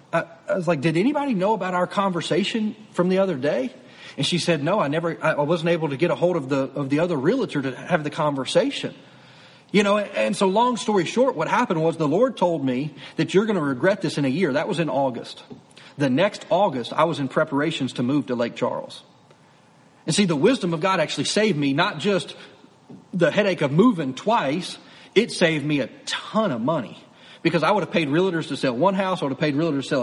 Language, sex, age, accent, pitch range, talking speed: English, male, 40-59, American, 155-205 Hz, 230 wpm